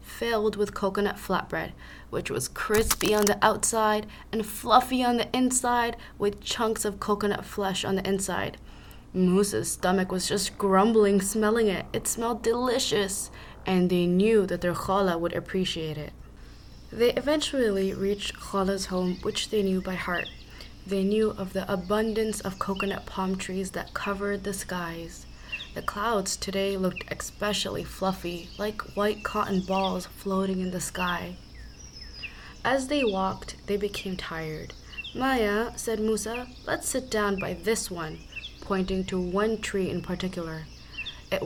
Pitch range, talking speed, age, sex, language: 185-215 Hz, 145 wpm, 20-39, female, English